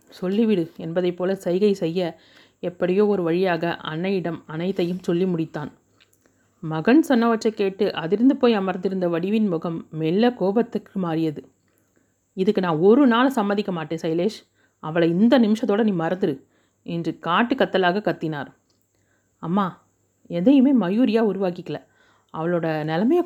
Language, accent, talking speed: Tamil, native, 115 wpm